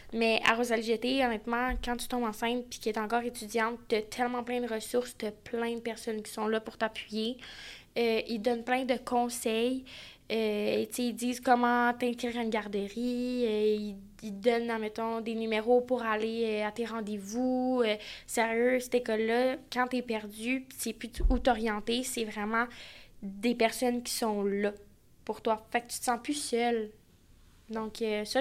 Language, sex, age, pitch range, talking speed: French, female, 10-29, 220-250 Hz, 185 wpm